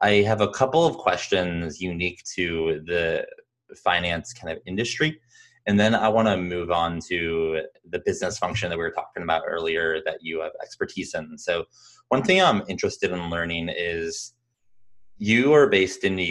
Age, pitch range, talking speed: 20-39, 85-110 Hz, 175 wpm